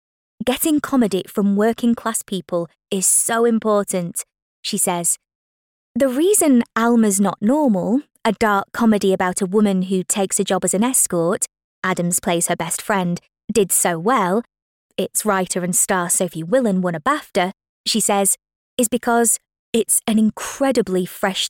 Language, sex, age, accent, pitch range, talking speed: English, female, 20-39, British, 185-230 Hz, 150 wpm